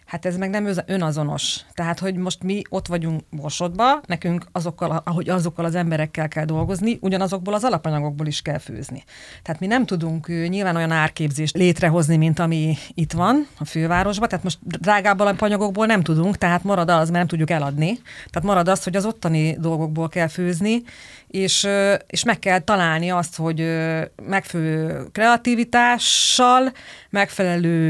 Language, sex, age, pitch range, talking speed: Hungarian, female, 30-49, 165-210 Hz, 155 wpm